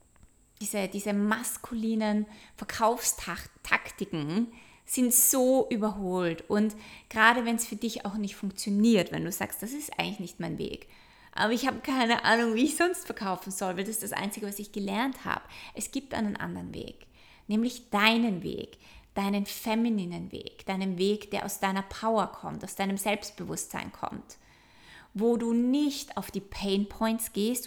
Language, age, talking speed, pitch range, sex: German, 20-39, 160 wpm, 195-225 Hz, female